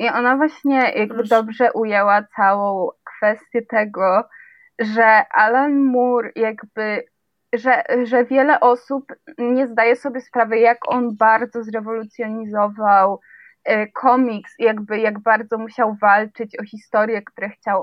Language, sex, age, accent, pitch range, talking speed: Polish, female, 20-39, native, 215-255 Hz, 120 wpm